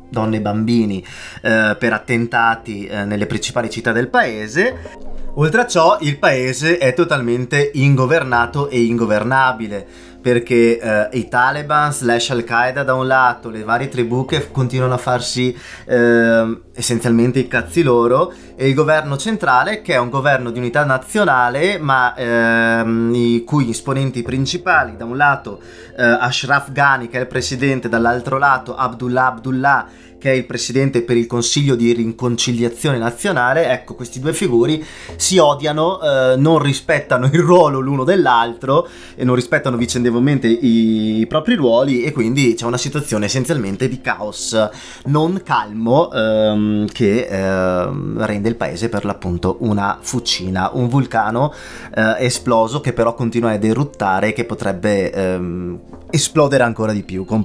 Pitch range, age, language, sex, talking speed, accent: 110-135 Hz, 20-39, Italian, male, 150 wpm, native